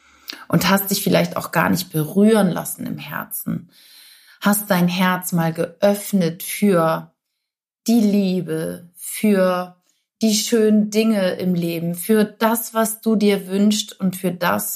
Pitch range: 175-225 Hz